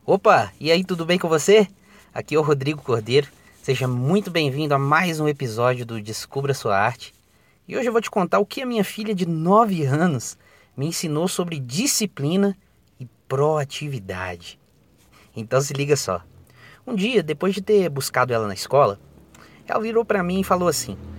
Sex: male